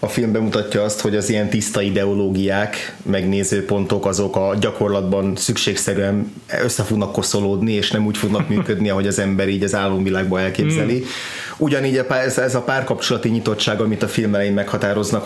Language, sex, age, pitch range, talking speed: Hungarian, male, 30-49, 100-120 Hz, 150 wpm